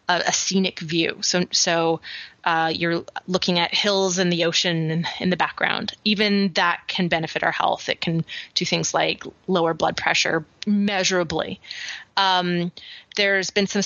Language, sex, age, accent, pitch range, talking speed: English, female, 20-39, American, 170-200 Hz, 150 wpm